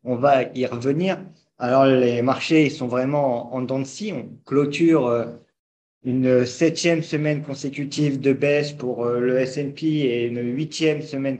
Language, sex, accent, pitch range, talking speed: French, male, French, 120-145 Hz, 145 wpm